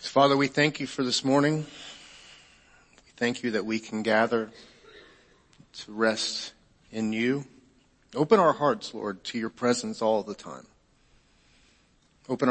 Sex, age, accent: male, 40-59, American